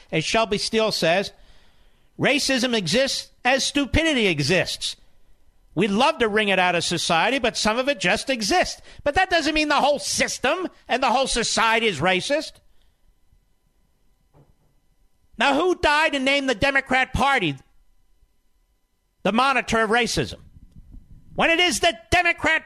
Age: 50-69